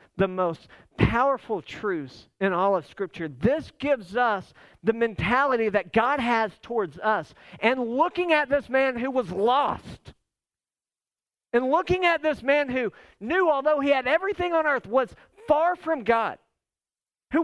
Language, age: English, 50-69